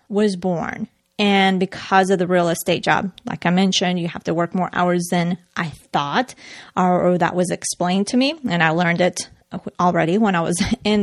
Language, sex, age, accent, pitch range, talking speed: English, female, 30-49, American, 175-210 Hz, 195 wpm